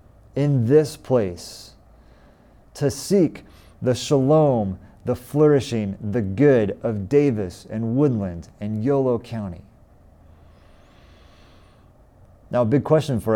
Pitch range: 105-140 Hz